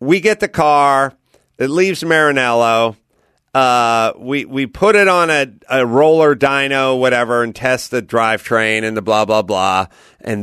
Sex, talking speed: male, 160 wpm